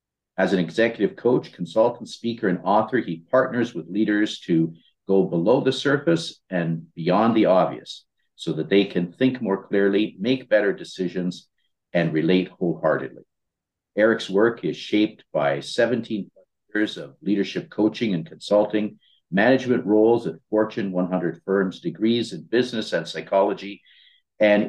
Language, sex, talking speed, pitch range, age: English, male, 140 wpm, 90-120 Hz, 50-69